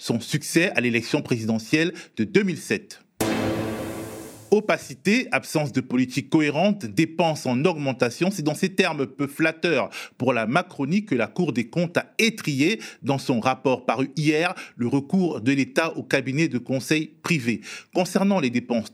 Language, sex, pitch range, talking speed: French, male, 130-190 Hz, 150 wpm